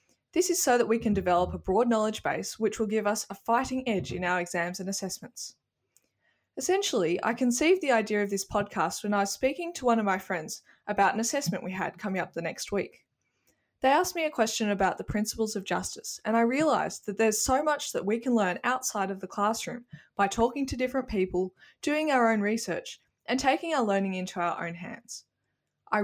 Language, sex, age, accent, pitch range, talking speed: English, female, 10-29, Australian, 190-245 Hz, 215 wpm